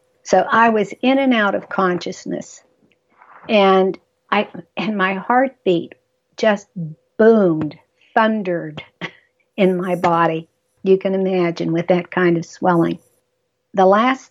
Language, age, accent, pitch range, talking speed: English, 50-69, American, 175-210 Hz, 120 wpm